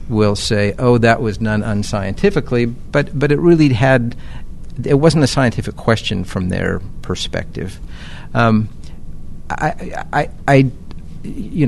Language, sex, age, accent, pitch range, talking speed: English, male, 50-69, American, 100-120 Hz, 130 wpm